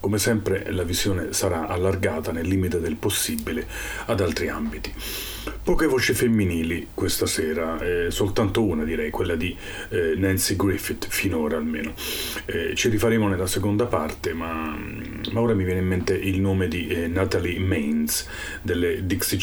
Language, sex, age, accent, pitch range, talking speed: Italian, male, 40-59, native, 80-100 Hz, 155 wpm